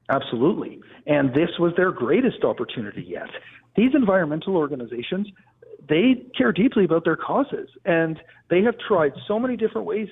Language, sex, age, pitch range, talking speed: English, male, 50-69, 150-220 Hz, 150 wpm